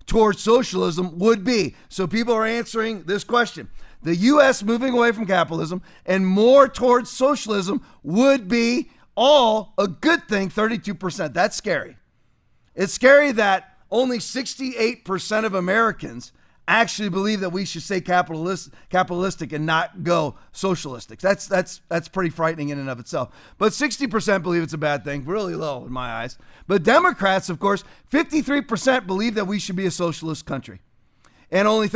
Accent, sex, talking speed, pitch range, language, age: American, male, 160 wpm, 170-225 Hz, English, 40-59